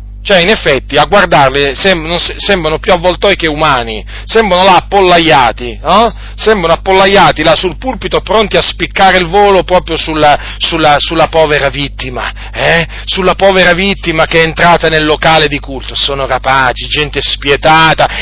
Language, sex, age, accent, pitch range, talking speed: Italian, male, 40-59, native, 125-175 Hz, 150 wpm